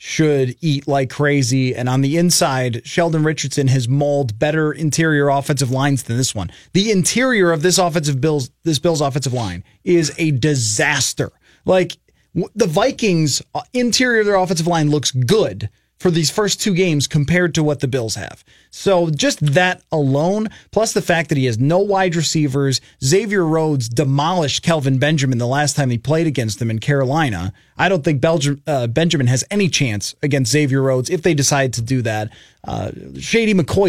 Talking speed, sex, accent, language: 180 wpm, male, American, English